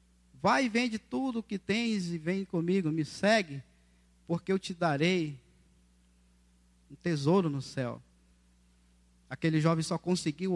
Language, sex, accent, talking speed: Portuguese, male, Brazilian, 135 wpm